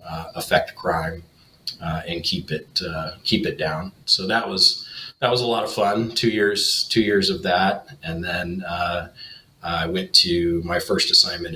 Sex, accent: male, American